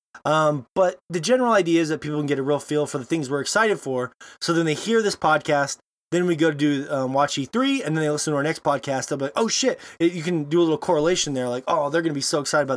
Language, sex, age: English, male, 20-39